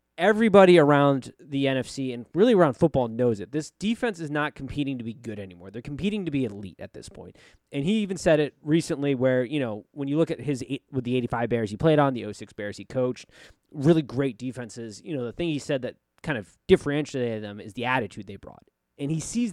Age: 20-39